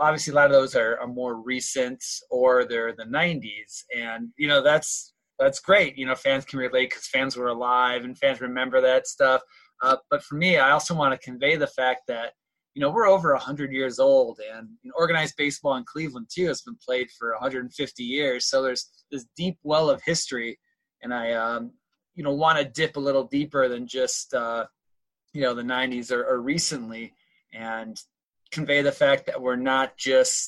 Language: English